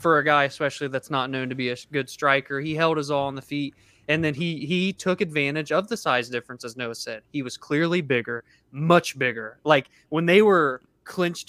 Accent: American